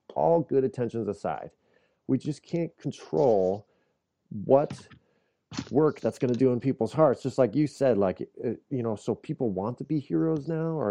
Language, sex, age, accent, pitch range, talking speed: English, male, 30-49, American, 100-135 Hz, 175 wpm